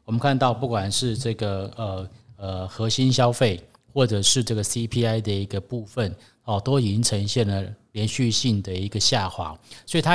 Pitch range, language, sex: 105-130 Hz, Chinese, male